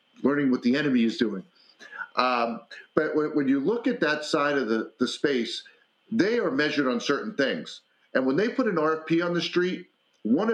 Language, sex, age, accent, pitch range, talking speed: English, male, 40-59, American, 145-195 Hz, 200 wpm